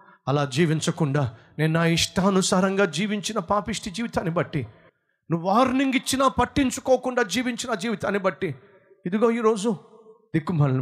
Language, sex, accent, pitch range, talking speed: Telugu, male, native, 140-235 Hz, 105 wpm